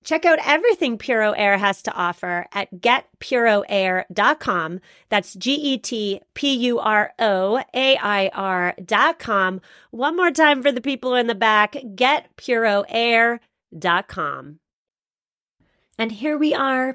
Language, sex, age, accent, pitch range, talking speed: English, female, 30-49, American, 195-245 Hz, 90 wpm